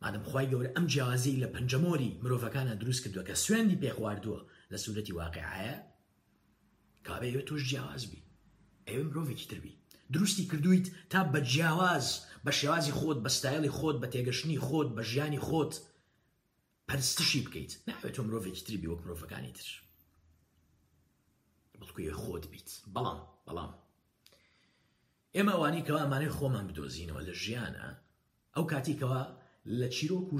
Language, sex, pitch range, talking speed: English, male, 115-155 Hz, 50 wpm